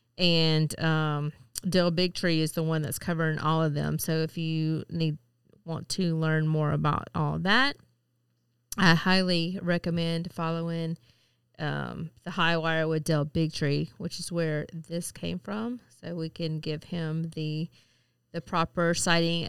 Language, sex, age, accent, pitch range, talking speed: English, female, 30-49, American, 130-175 Hz, 155 wpm